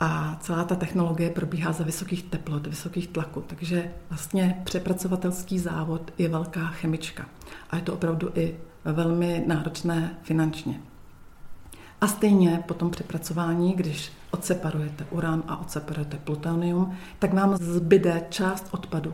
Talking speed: 130 wpm